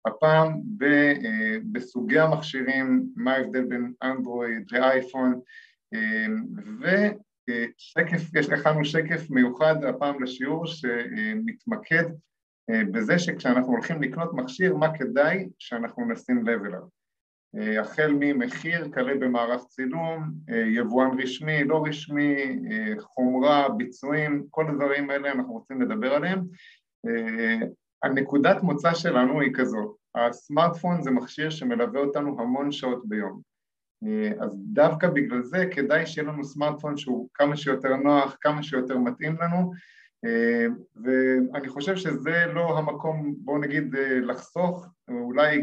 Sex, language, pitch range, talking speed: male, Hebrew, 130-170 Hz, 110 wpm